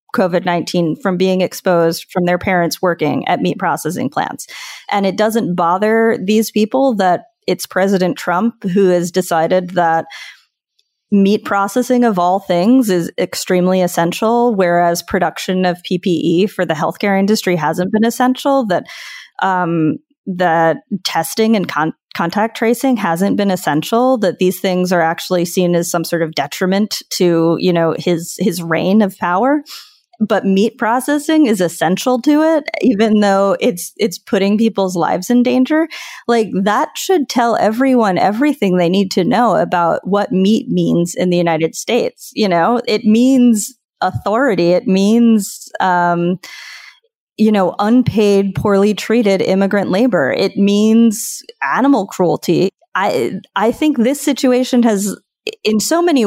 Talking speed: 145 wpm